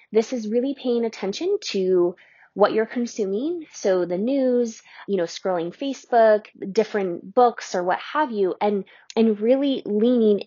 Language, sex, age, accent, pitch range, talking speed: English, female, 20-39, American, 175-230 Hz, 150 wpm